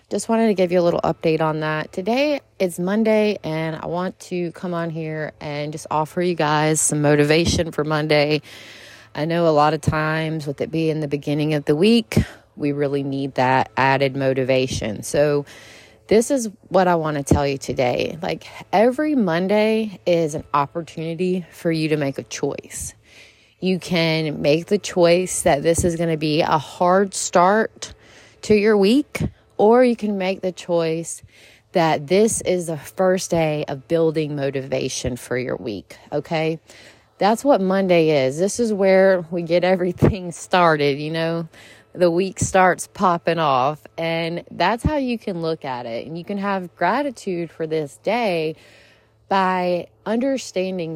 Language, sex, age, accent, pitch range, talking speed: English, female, 20-39, American, 145-185 Hz, 170 wpm